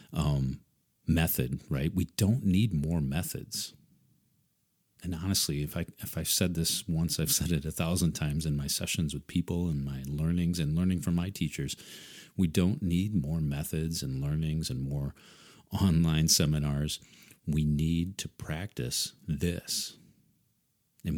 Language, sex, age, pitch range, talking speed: English, male, 40-59, 75-95 Hz, 145 wpm